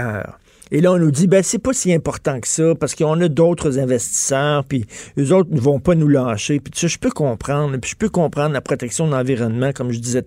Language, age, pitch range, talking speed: French, 50-69, 120-160 Hz, 245 wpm